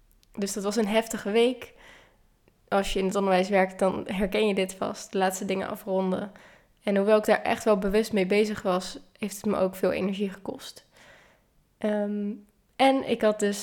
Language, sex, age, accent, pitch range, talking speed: Dutch, female, 20-39, Dutch, 200-230 Hz, 185 wpm